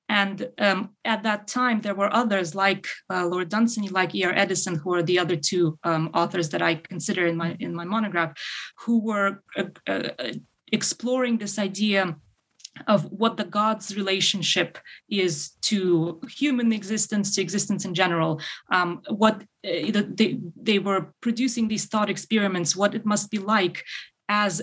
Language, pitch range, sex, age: English, 175-215 Hz, female, 20-39